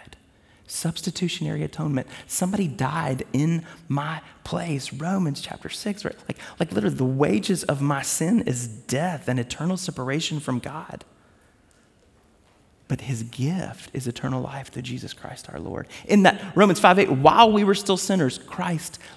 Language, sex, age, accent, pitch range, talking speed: English, male, 30-49, American, 115-175 Hz, 150 wpm